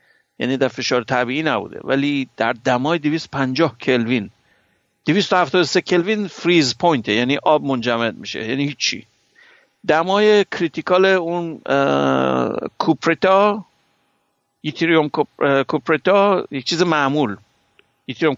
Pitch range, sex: 135-170 Hz, male